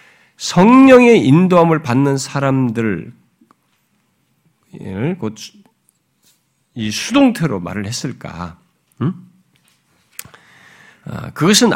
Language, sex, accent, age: Korean, male, native, 50-69